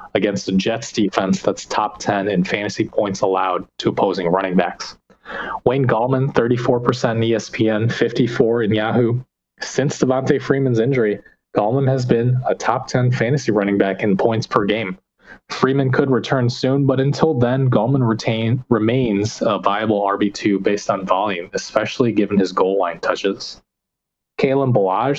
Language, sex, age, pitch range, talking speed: English, male, 20-39, 110-130 Hz, 150 wpm